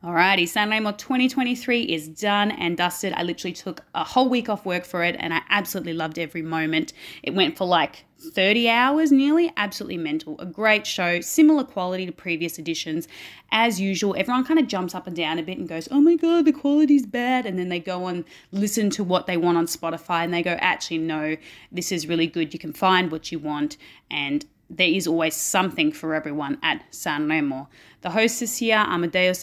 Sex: female